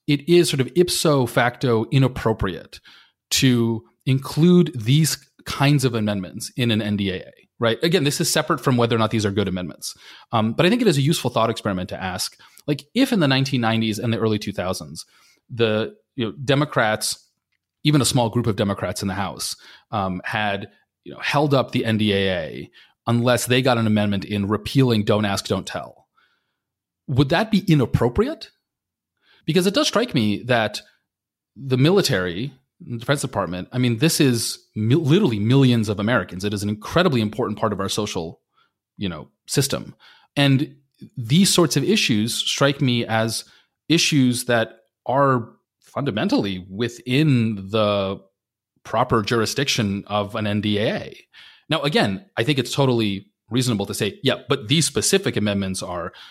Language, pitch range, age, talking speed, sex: English, 105-140 Hz, 30-49, 160 wpm, male